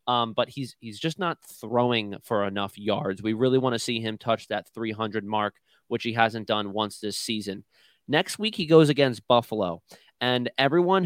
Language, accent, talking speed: English, American, 190 wpm